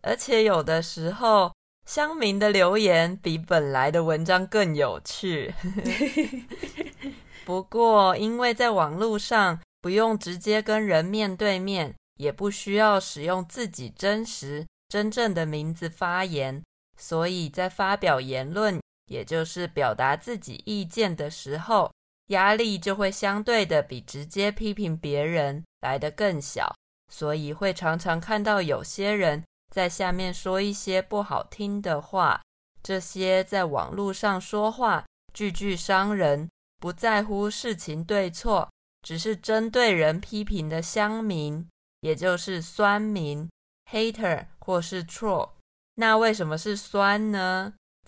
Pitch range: 165-210 Hz